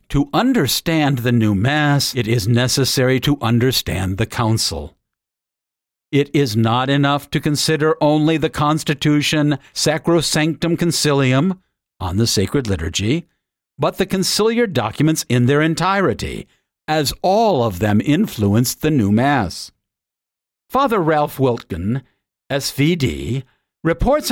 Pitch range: 120-155 Hz